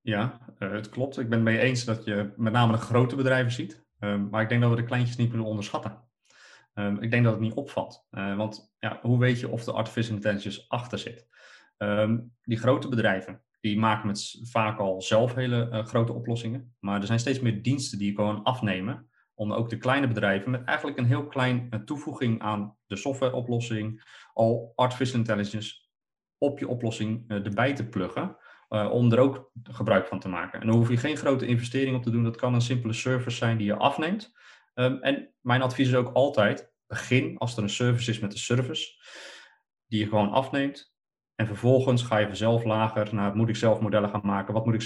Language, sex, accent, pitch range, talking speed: Dutch, male, Dutch, 105-125 Hz, 215 wpm